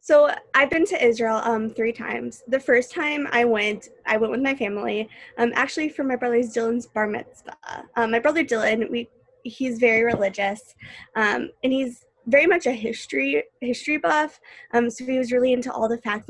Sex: female